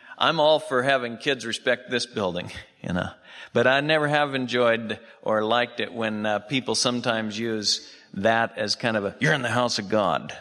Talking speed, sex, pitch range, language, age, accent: 195 wpm, male, 105-135 Hz, English, 50-69, American